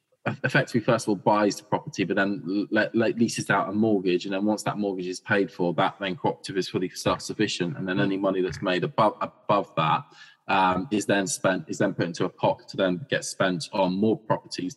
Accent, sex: British, male